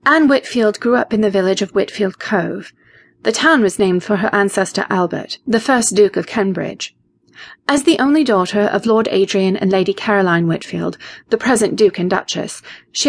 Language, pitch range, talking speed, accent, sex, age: English, 185-235 Hz, 185 wpm, British, female, 30-49